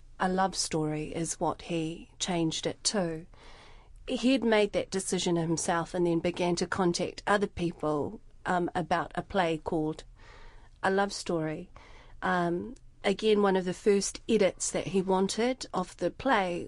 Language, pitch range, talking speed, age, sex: English, 175-205 Hz, 150 wpm, 40-59, female